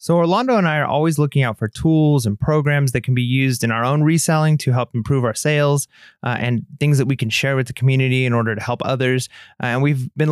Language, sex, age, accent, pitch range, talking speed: English, male, 30-49, American, 125-150 Hz, 255 wpm